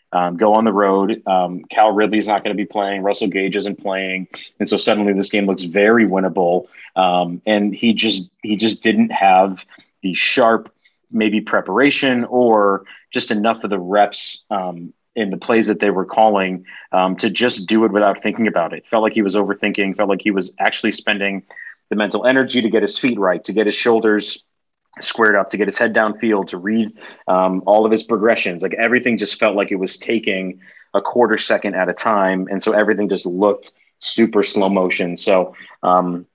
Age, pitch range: 30-49, 95-110 Hz